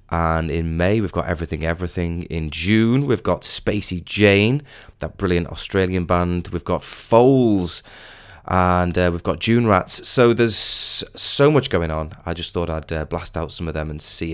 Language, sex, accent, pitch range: English, male, British, 85-110 Hz